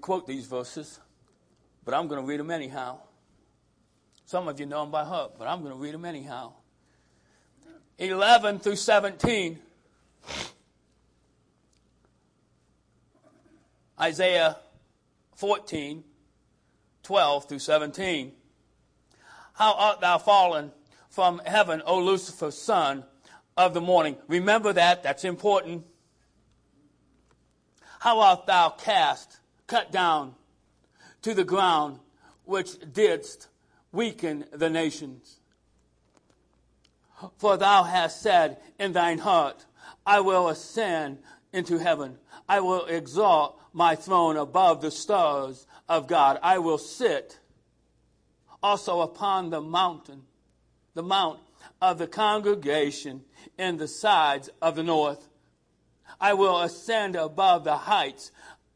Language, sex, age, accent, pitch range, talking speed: English, male, 50-69, American, 145-190 Hz, 110 wpm